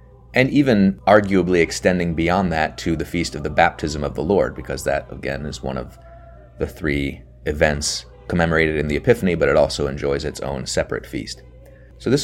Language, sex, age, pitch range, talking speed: English, male, 30-49, 70-95 Hz, 185 wpm